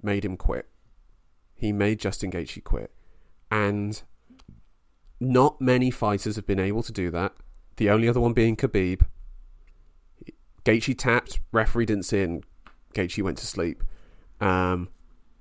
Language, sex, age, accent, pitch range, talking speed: English, male, 30-49, British, 95-125 Hz, 135 wpm